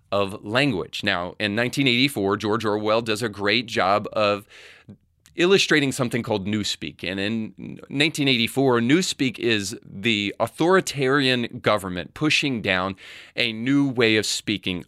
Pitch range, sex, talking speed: 100-130 Hz, male, 125 wpm